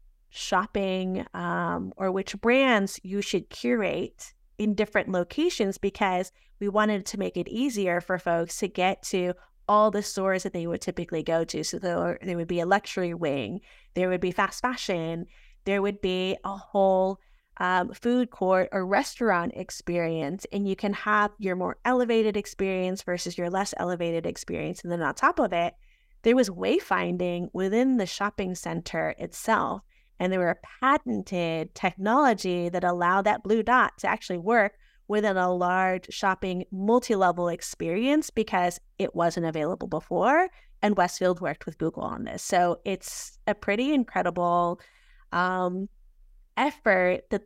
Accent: American